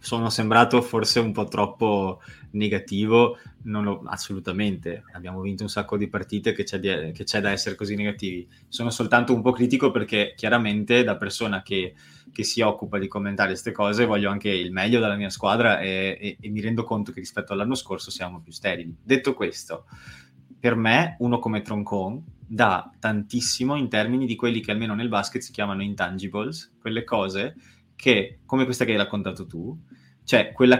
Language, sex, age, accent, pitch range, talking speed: Italian, male, 20-39, native, 100-120 Hz, 180 wpm